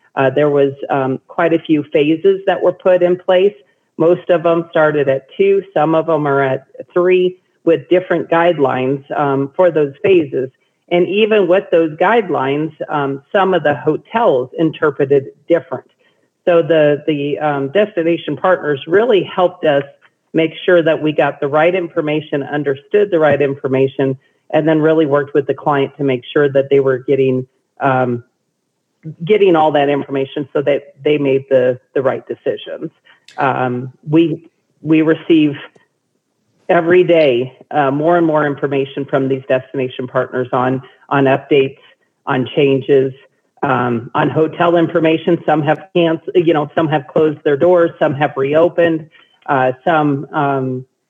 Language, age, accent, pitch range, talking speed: English, 40-59, American, 135-170 Hz, 155 wpm